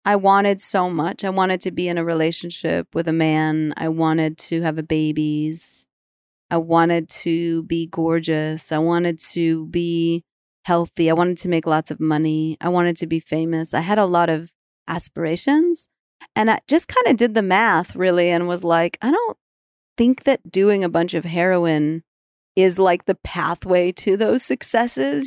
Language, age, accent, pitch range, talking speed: English, 30-49, American, 160-190 Hz, 180 wpm